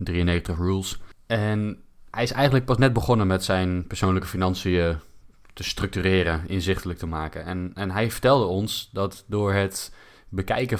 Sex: male